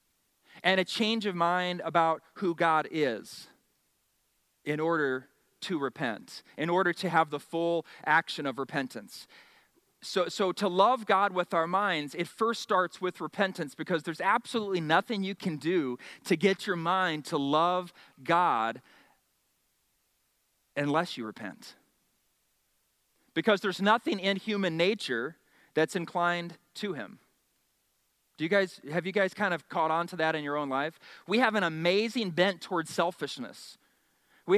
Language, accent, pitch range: English, American, 140-185 Hz